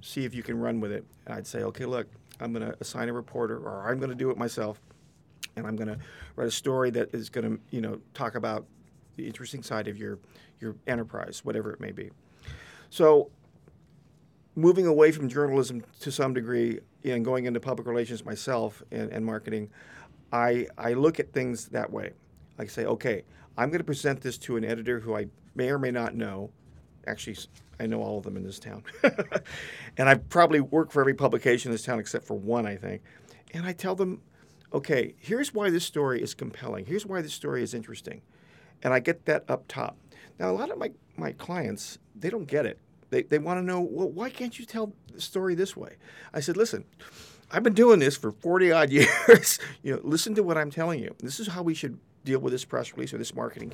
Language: English